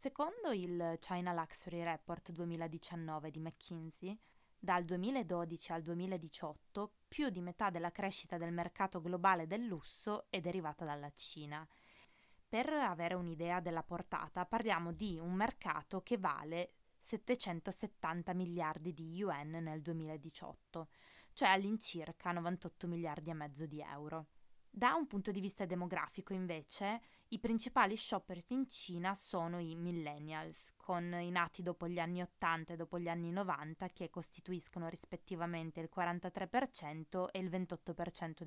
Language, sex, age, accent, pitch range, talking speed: Italian, female, 20-39, native, 165-195 Hz, 135 wpm